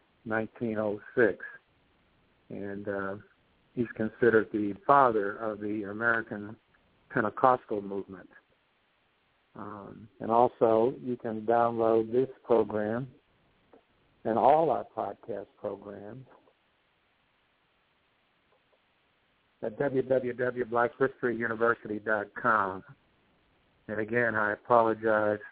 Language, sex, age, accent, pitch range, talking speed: English, male, 60-79, American, 105-120 Hz, 75 wpm